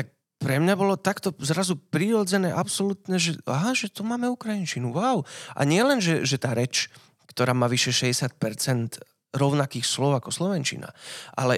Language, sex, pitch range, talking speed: Slovak, male, 130-165 Hz, 150 wpm